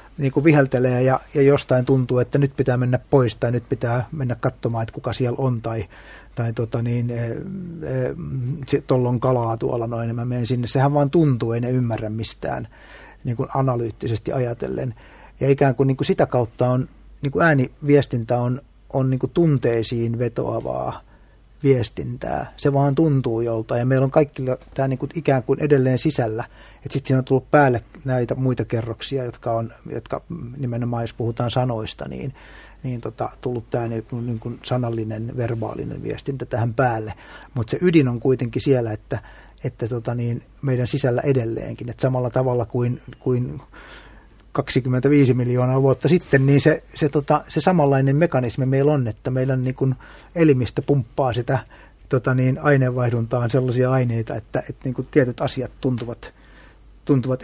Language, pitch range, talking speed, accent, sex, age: Finnish, 120-140 Hz, 155 wpm, native, male, 30-49